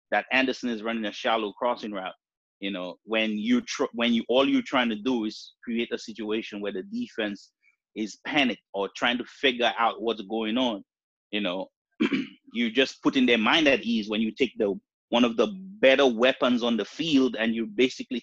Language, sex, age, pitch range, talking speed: English, male, 30-49, 110-130 Hz, 200 wpm